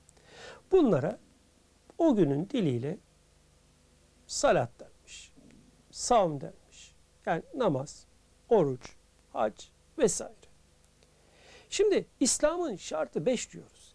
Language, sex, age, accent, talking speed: Turkish, male, 60-79, native, 75 wpm